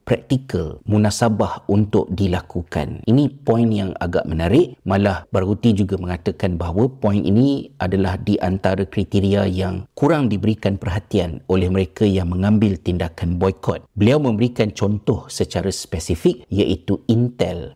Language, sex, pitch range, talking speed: Malay, male, 95-115 Hz, 125 wpm